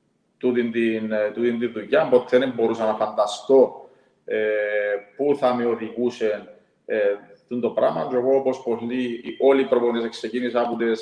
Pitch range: 115-135 Hz